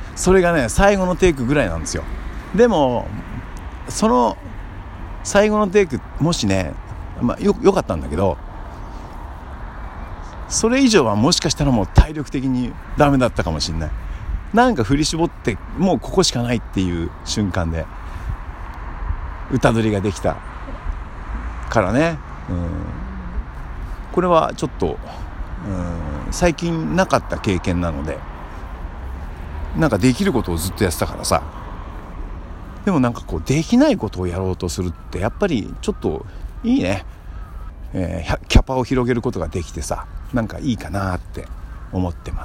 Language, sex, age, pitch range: Japanese, male, 60-79, 80-110 Hz